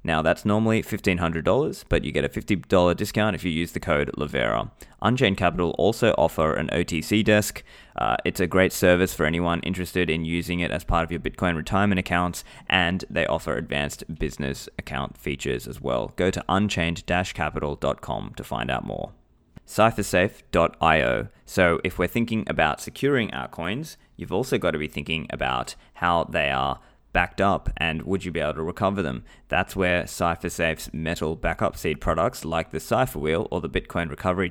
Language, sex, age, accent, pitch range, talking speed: English, male, 20-39, Australian, 80-95 Hz, 175 wpm